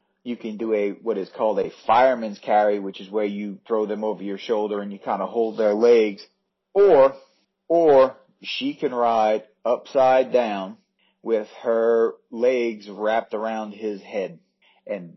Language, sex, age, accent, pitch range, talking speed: English, male, 40-59, American, 110-155 Hz, 160 wpm